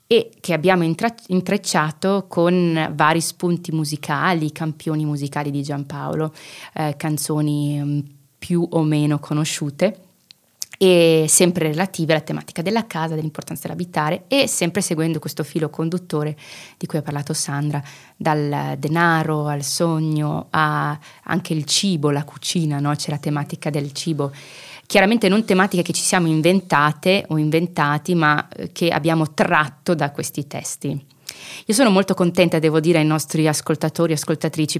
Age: 20-39